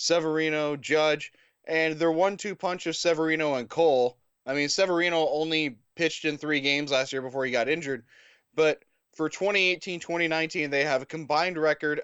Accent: American